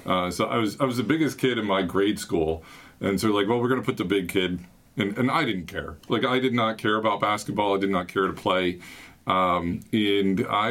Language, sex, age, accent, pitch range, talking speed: English, male, 40-59, American, 100-120 Hz, 250 wpm